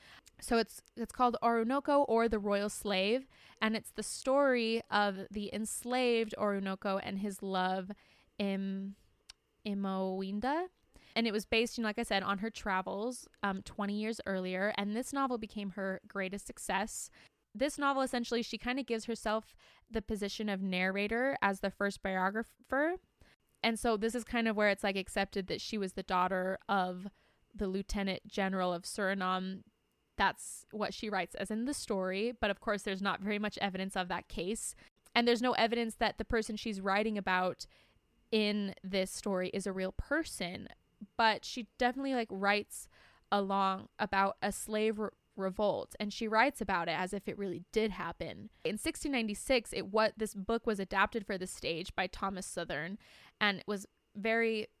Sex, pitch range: female, 195-230 Hz